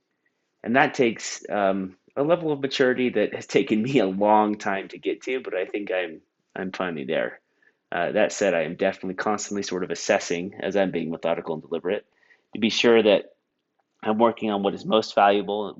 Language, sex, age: English, male, 30-49